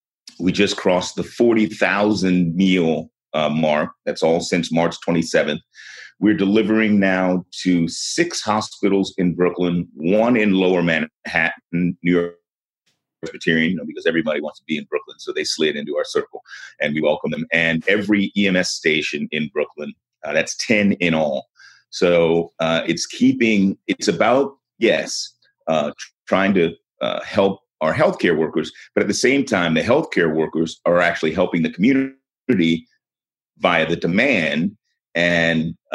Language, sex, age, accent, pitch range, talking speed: English, male, 30-49, American, 80-100 Hz, 145 wpm